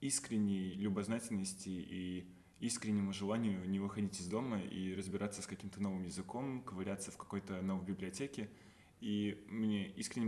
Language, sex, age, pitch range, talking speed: Russian, male, 20-39, 95-105 Hz, 135 wpm